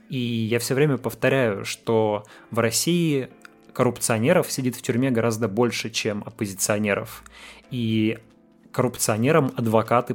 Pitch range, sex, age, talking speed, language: 110-125 Hz, male, 20-39, 110 wpm, Russian